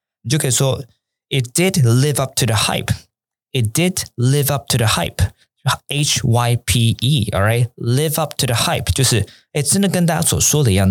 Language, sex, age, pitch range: Chinese, male, 20-39, 110-155 Hz